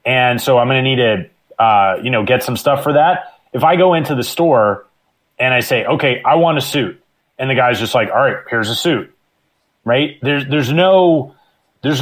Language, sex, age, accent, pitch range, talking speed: English, male, 30-49, American, 130-170 Hz, 220 wpm